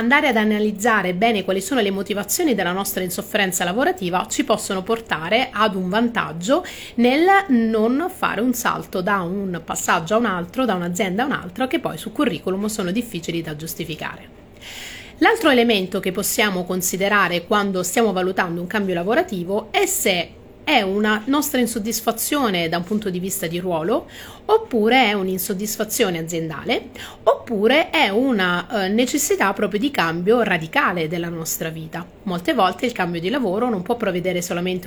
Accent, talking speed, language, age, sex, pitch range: native, 155 wpm, Italian, 30-49, female, 180-235 Hz